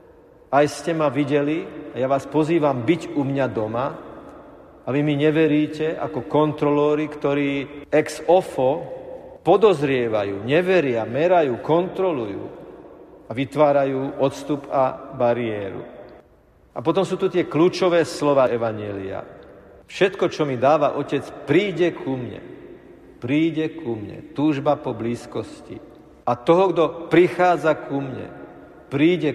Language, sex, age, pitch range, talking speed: Slovak, male, 50-69, 125-155 Hz, 120 wpm